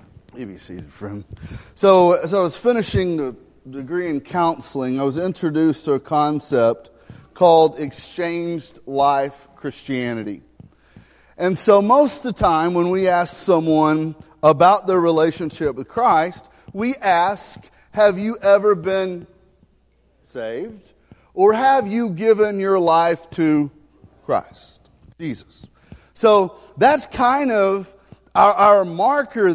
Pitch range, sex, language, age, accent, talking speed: 160-220 Hz, male, English, 40-59, American, 115 wpm